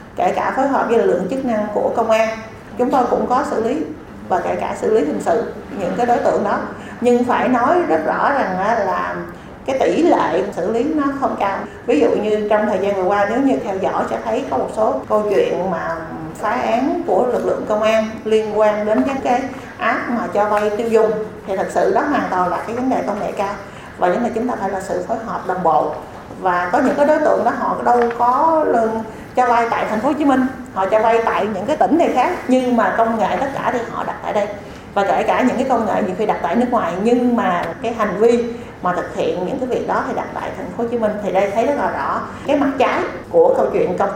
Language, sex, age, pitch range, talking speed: Vietnamese, female, 30-49, 215-255 Hz, 265 wpm